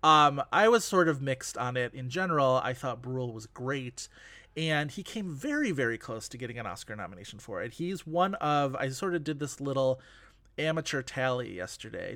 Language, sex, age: English, male, 30-49